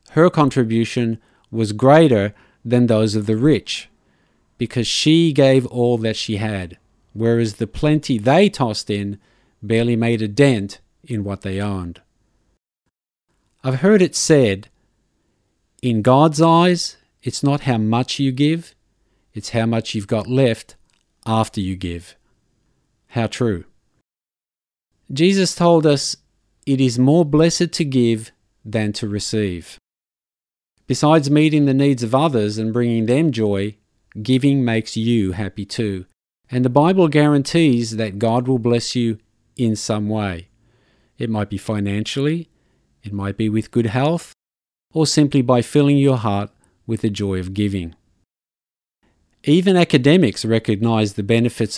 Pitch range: 105-140 Hz